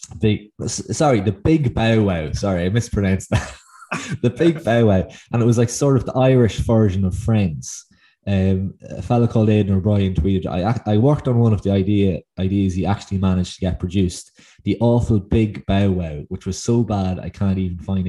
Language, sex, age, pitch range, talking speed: English, male, 20-39, 95-110 Hz, 200 wpm